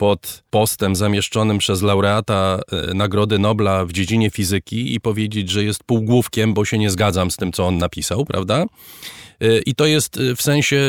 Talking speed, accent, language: 165 wpm, native, Polish